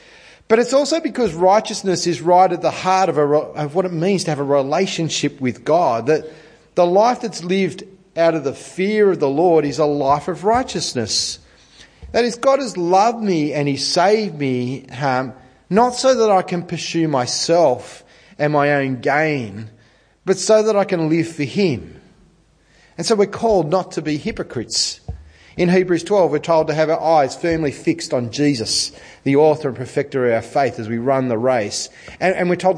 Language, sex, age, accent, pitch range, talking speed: English, male, 40-59, Australian, 135-185 Hz, 190 wpm